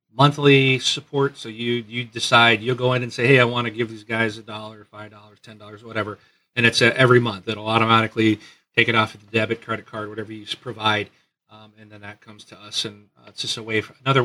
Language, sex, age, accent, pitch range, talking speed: English, male, 40-59, American, 110-135 Hz, 240 wpm